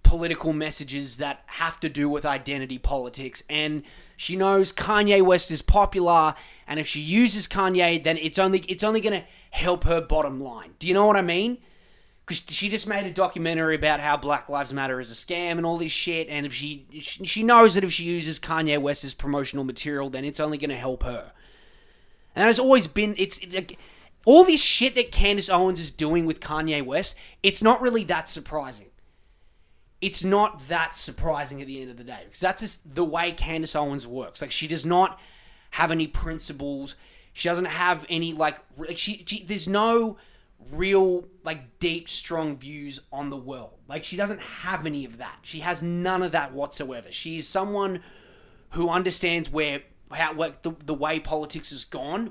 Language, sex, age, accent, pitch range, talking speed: English, male, 20-39, Australian, 145-185 Hz, 190 wpm